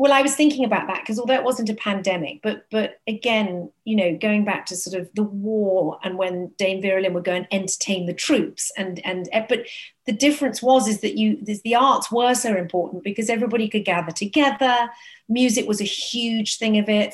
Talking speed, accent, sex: 215 wpm, British, female